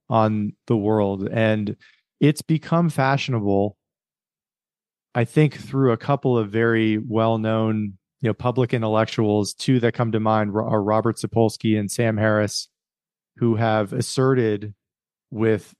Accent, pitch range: American, 110-125 Hz